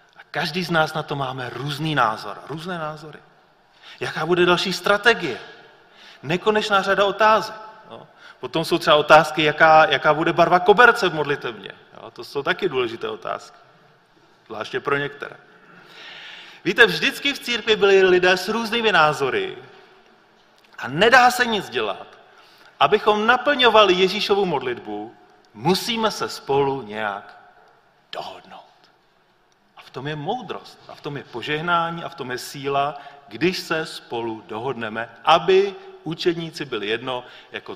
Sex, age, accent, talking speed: male, 40-59, native, 135 wpm